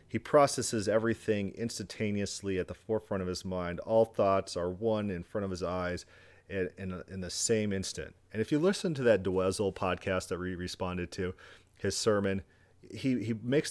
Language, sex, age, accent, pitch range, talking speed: English, male, 40-59, American, 90-115 Hz, 175 wpm